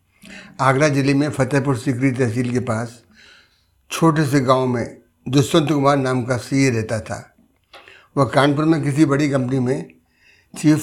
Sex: male